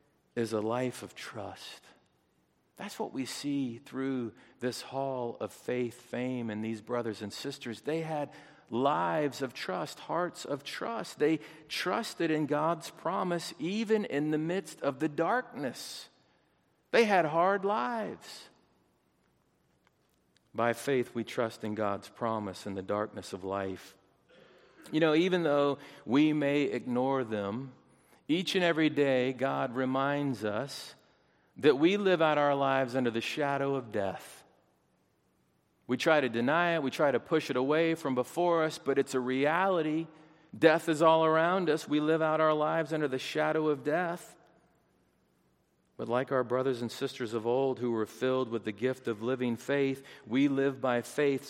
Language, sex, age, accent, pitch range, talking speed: English, male, 50-69, American, 120-155 Hz, 160 wpm